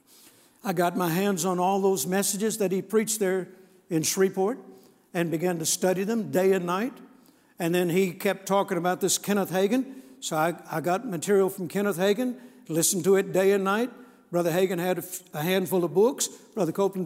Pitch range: 180-220 Hz